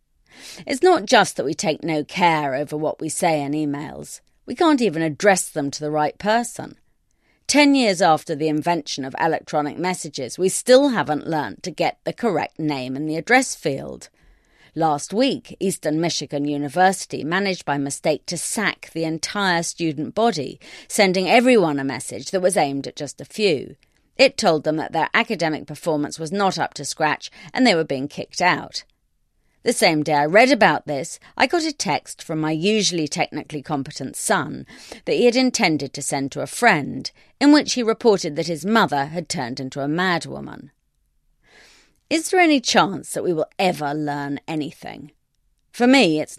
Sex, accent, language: female, British, English